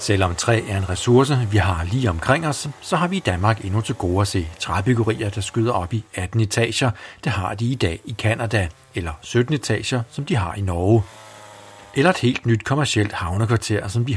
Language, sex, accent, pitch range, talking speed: Danish, male, native, 100-130 Hz, 210 wpm